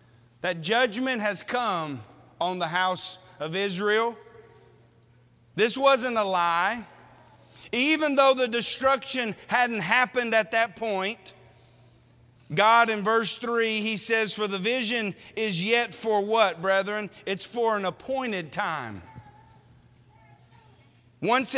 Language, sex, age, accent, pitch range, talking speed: English, male, 40-59, American, 165-235 Hz, 115 wpm